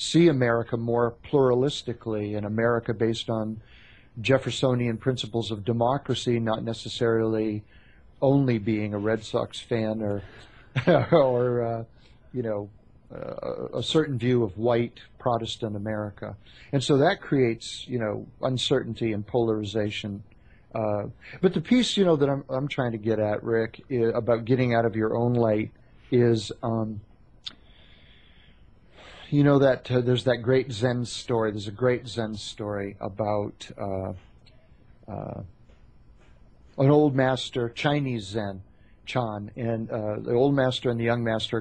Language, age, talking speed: English, 40-59, 140 wpm